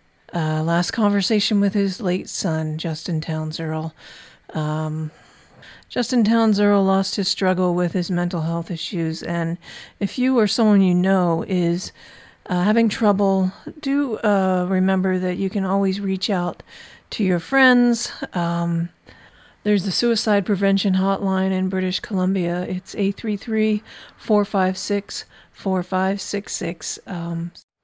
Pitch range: 185-215 Hz